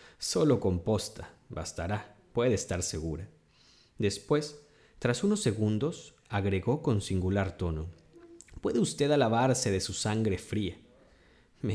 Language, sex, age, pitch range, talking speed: Spanish, male, 30-49, 95-125 Hz, 110 wpm